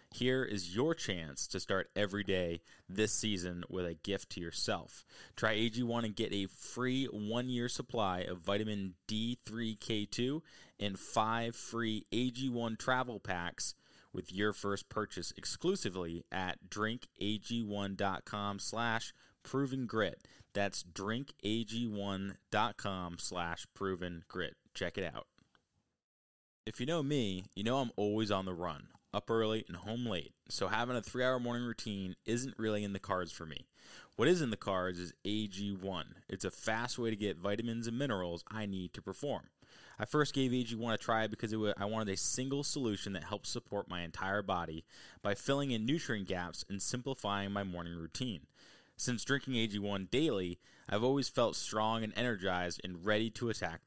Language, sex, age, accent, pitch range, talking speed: English, male, 20-39, American, 95-115 Hz, 155 wpm